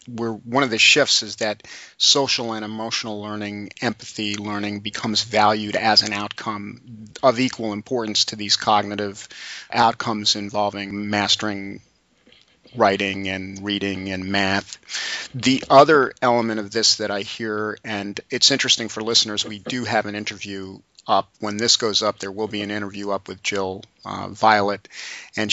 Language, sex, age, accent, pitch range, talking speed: English, male, 40-59, American, 100-115 Hz, 155 wpm